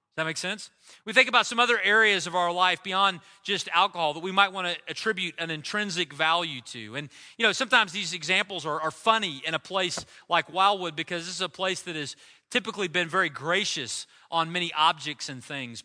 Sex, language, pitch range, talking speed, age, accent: male, English, 160-205 Hz, 210 wpm, 40-59, American